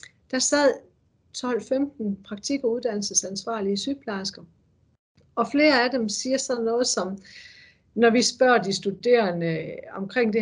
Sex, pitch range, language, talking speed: female, 195-265 Hz, Danish, 125 wpm